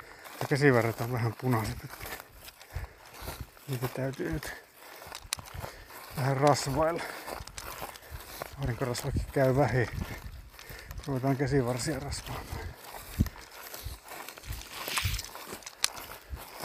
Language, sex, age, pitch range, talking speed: Finnish, male, 60-79, 120-140 Hz, 60 wpm